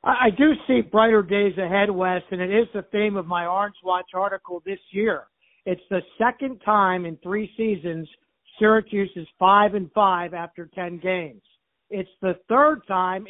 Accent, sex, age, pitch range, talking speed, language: American, male, 60-79, 185-215 Hz, 175 wpm, English